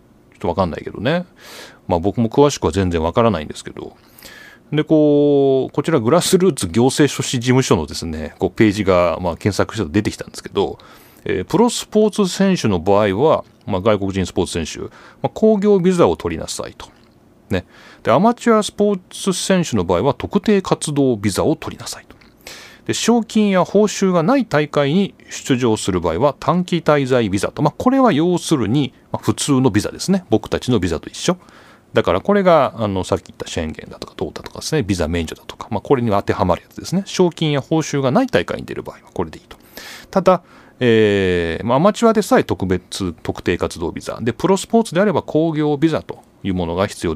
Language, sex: Japanese, male